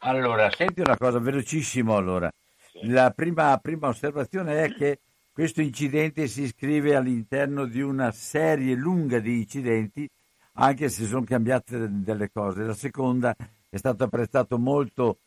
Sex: male